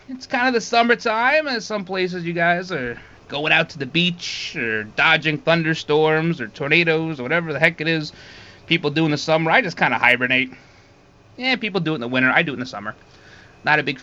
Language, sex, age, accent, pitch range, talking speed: English, male, 30-49, American, 135-200 Hz, 225 wpm